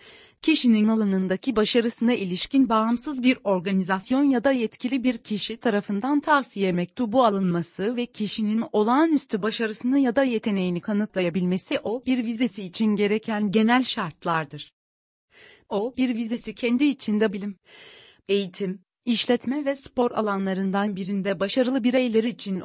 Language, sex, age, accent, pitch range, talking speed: Turkish, female, 30-49, native, 195-245 Hz, 120 wpm